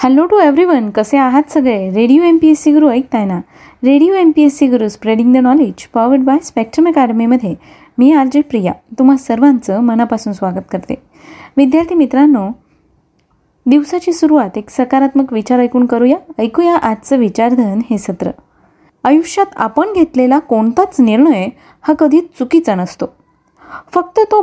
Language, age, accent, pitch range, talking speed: Marathi, 20-39, native, 225-295 Hz, 140 wpm